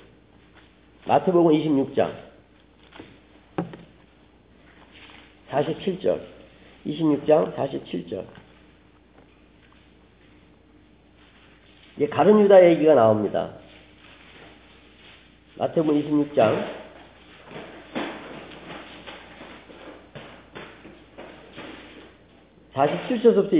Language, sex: Korean, male